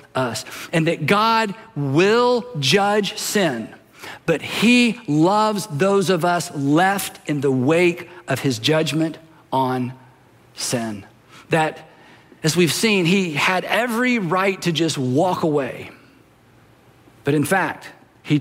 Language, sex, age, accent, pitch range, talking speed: English, male, 50-69, American, 135-185 Hz, 125 wpm